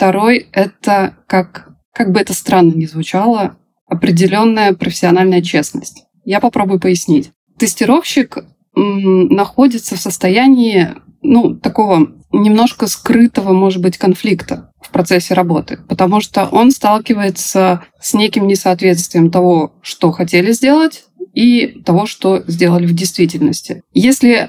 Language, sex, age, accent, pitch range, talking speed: Russian, female, 20-39, native, 185-235 Hz, 115 wpm